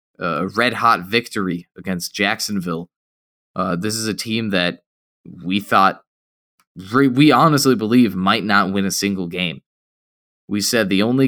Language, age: English, 20-39